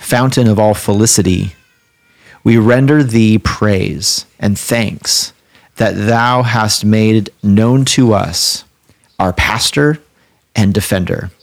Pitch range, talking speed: 100-115 Hz, 110 wpm